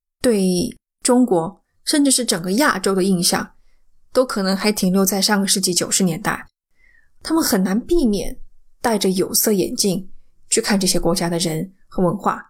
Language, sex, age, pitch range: Chinese, female, 20-39, 195-245 Hz